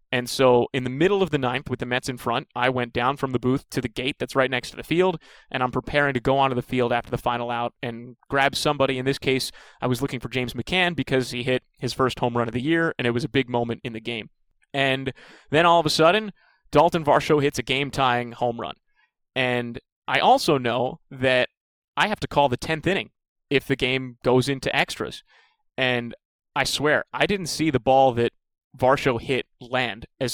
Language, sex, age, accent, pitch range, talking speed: English, male, 30-49, American, 125-145 Hz, 225 wpm